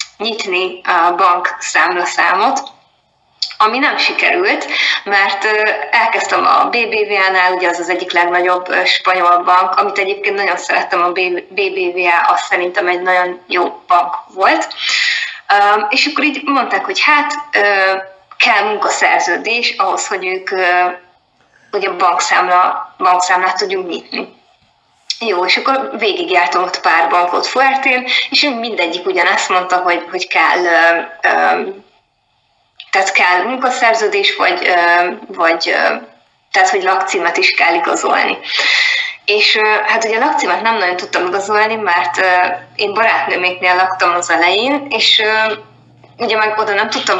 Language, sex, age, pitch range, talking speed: Hungarian, female, 20-39, 180-255 Hz, 115 wpm